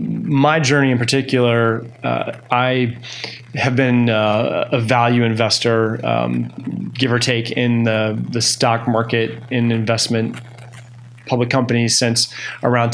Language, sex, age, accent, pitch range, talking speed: English, male, 20-39, American, 115-125 Hz, 125 wpm